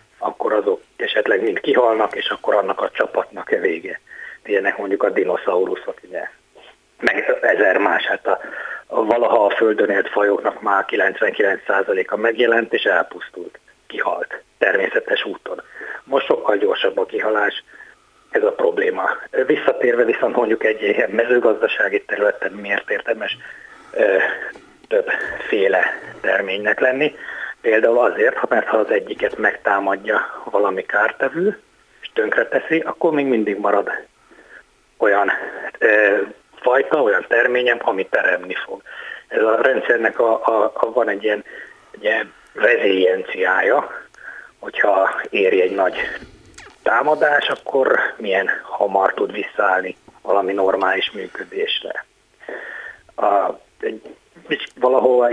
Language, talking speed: Hungarian, 115 wpm